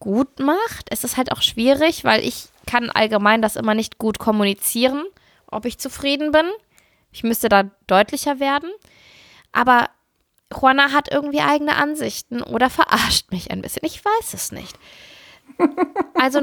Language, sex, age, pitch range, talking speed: German, female, 20-39, 195-275 Hz, 155 wpm